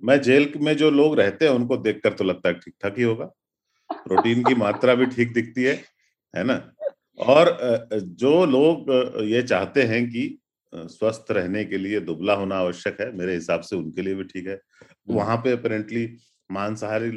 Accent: native